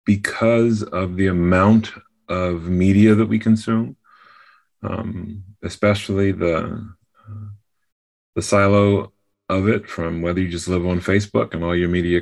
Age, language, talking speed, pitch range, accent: 30-49, English, 135 wpm, 90-110 Hz, American